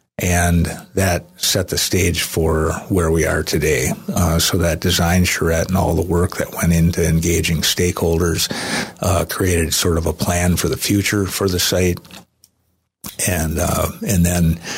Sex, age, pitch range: male, 50-69, 85-90 Hz